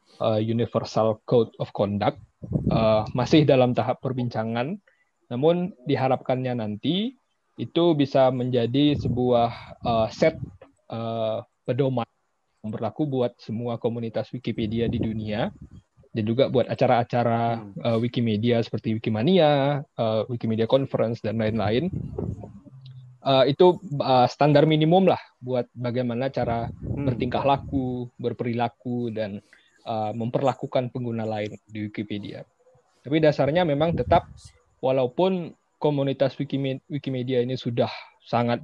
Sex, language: male, Indonesian